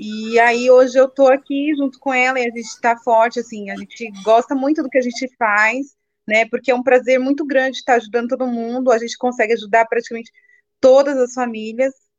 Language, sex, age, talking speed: Portuguese, female, 20-39, 210 wpm